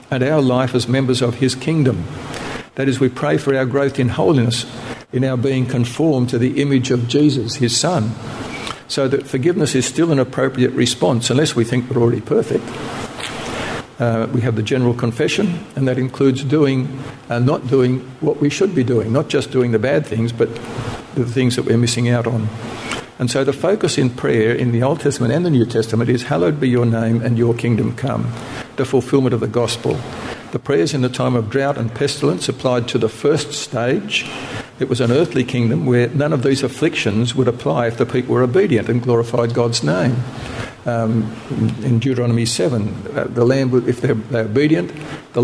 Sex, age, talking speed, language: male, 60-79, 195 wpm, English